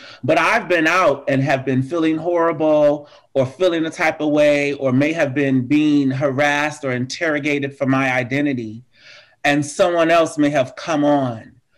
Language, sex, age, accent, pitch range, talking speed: English, male, 30-49, American, 125-145 Hz, 170 wpm